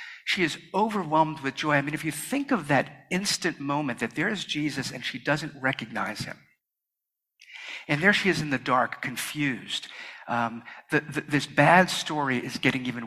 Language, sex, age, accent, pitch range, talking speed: English, male, 50-69, American, 130-170 Hz, 175 wpm